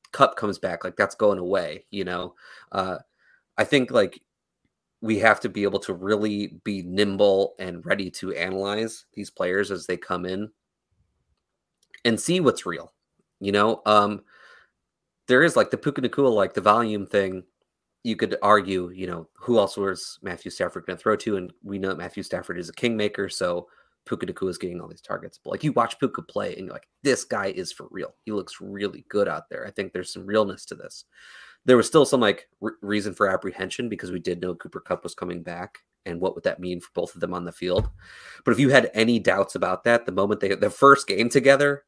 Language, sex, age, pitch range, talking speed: English, male, 30-49, 95-110 Hz, 215 wpm